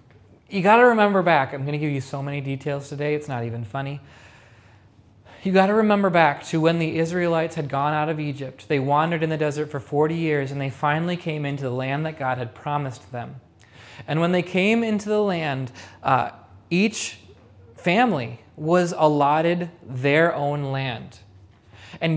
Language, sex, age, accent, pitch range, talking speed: English, male, 20-39, American, 130-185 Hz, 185 wpm